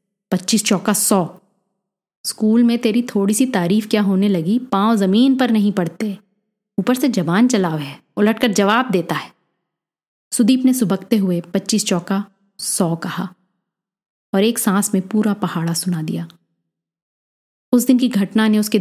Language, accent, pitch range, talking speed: Hindi, native, 175-215 Hz, 155 wpm